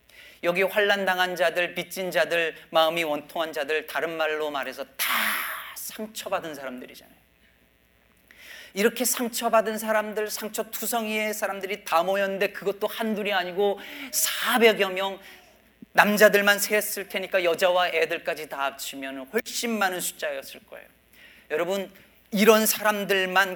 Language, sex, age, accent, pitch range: Korean, male, 40-59, native, 175-225 Hz